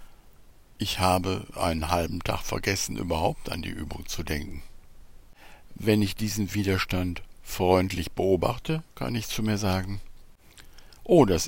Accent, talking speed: German, 130 wpm